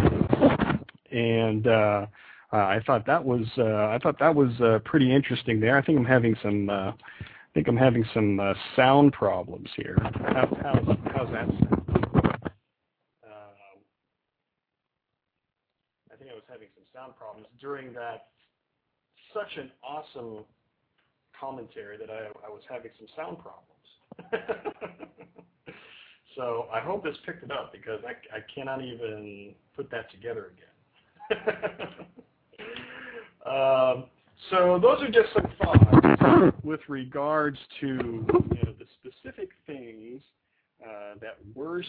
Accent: American